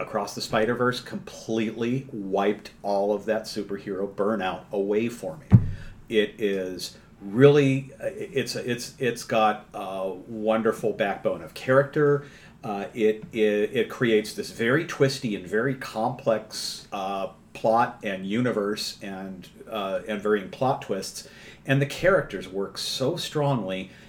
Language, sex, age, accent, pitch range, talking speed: English, male, 50-69, American, 105-130 Hz, 130 wpm